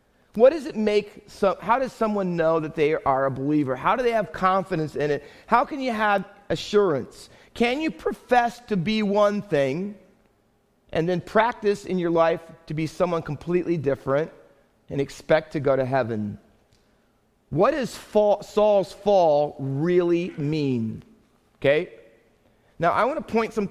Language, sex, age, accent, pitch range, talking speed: English, male, 40-59, American, 150-205 Hz, 155 wpm